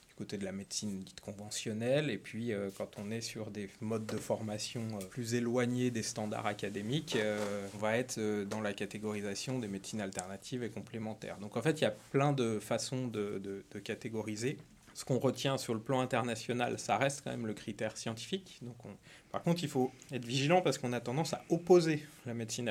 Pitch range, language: 105-130 Hz, French